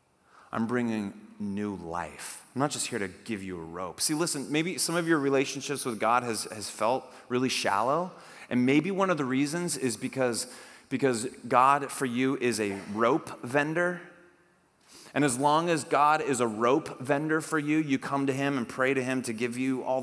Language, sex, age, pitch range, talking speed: English, male, 30-49, 110-140 Hz, 200 wpm